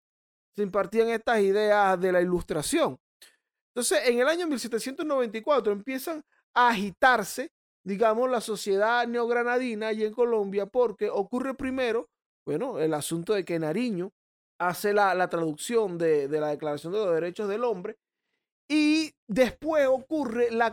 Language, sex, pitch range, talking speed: Spanish, male, 185-250 Hz, 140 wpm